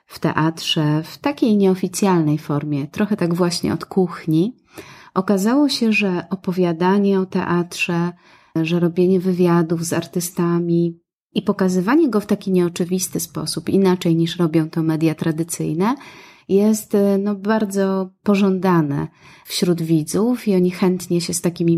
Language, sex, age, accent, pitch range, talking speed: Polish, female, 30-49, native, 165-195 Hz, 125 wpm